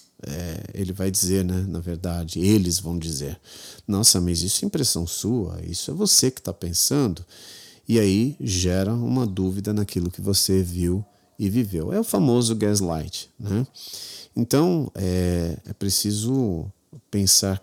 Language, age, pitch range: Portuguese, 40-59, 90-115 Hz